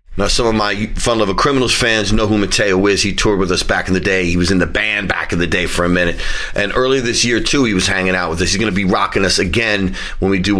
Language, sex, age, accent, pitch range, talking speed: English, male, 40-59, American, 90-105 Hz, 305 wpm